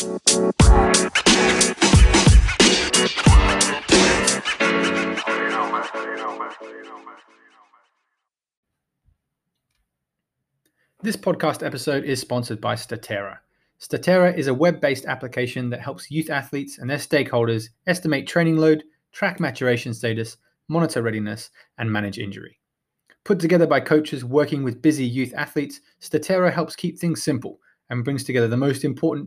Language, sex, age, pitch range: English, male, 20-39, 120-155 Hz